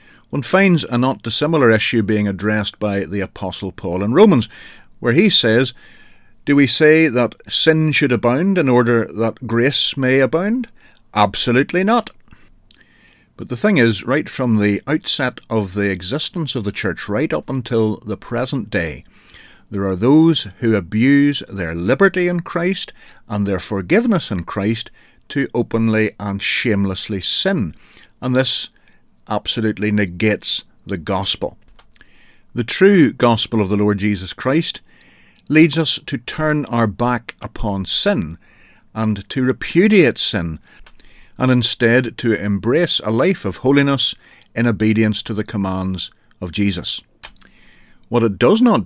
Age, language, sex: 50-69, English, male